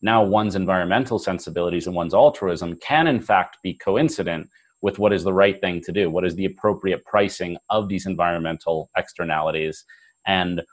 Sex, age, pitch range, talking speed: male, 30-49, 90-105 Hz, 170 wpm